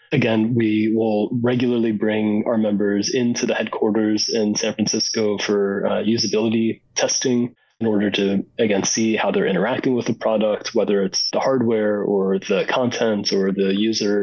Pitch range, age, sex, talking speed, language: 100-115 Hz, 20-39, male, 160 wpm, English